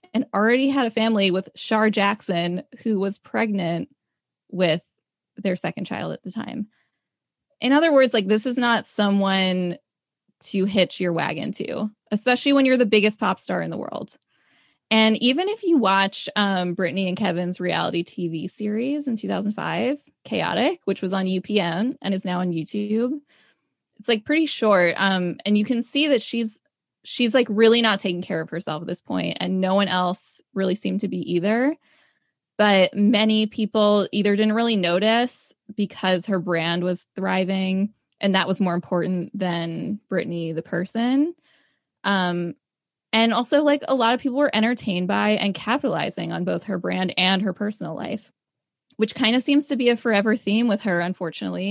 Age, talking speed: 20-39, 175 wpm